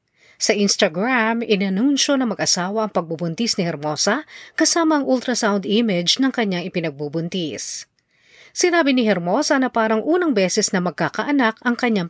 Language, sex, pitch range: Filipino, female, 175-255 Hz